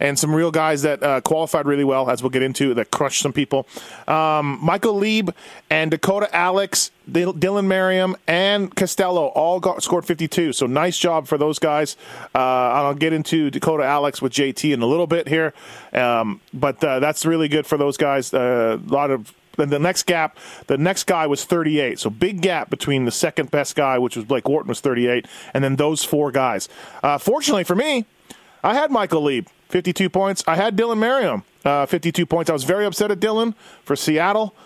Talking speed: 205 wpm